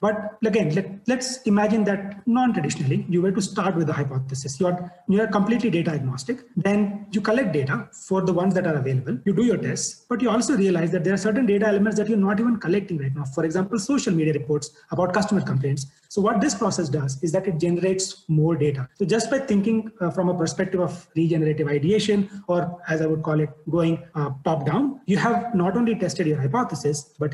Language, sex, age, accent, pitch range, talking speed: English, male, 30-49, Indian, 160-210 Hz, 215 wpm